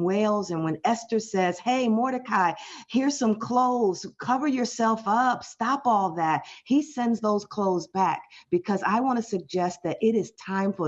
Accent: American